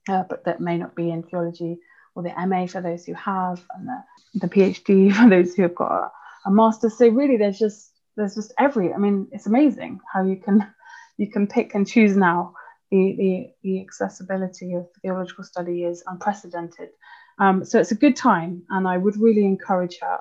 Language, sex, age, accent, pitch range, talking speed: English, female, 20-39, British, 180-210 Hz, 200 wpm